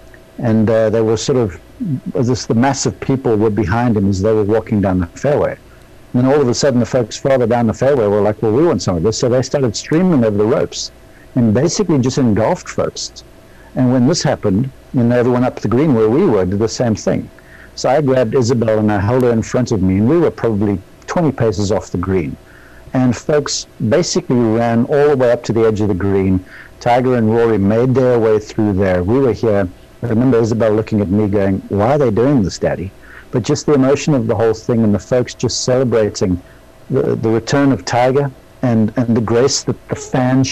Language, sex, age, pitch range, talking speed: English, male, 60-79, 105-125 Hz, 225 wpm